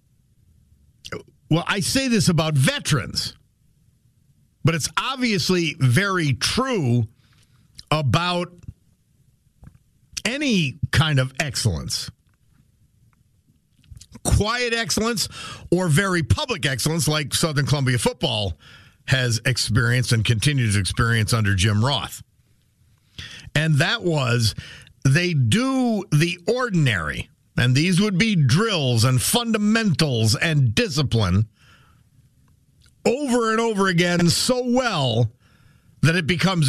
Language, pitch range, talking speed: English, 120-170 Hz, 100 wpm